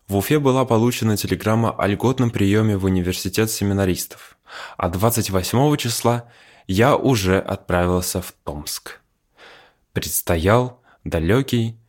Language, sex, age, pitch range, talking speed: Russian, male, 20-39, 95-120 Hz, 105 wpm